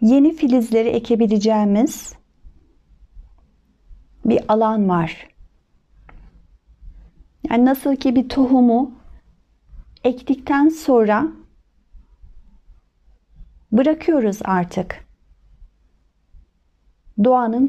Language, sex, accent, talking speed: Turkish, female, native, 55 wpm